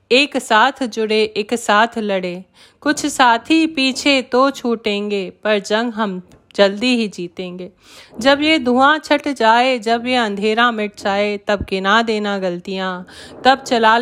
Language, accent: Hindi, native